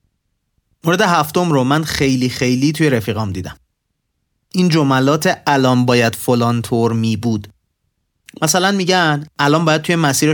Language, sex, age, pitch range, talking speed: Persian, male, 30-49, 120-165 Hz, 135 wpm